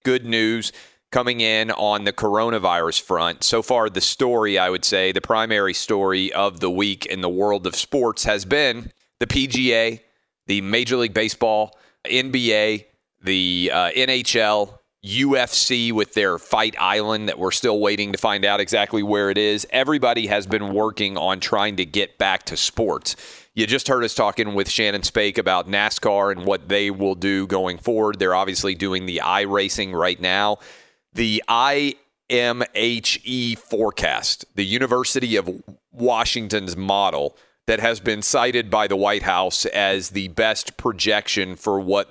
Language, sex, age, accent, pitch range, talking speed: English, male, 30-49, American, 95-115 Hz, 160 wpm